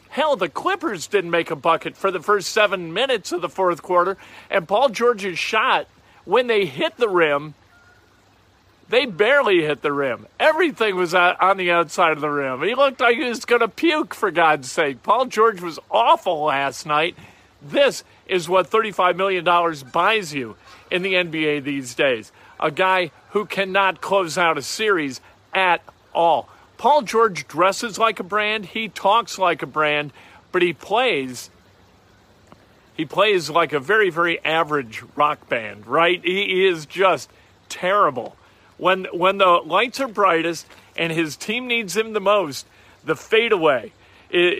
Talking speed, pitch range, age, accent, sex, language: 165 wpm, 155-215 Hz, 50-69, American, male, English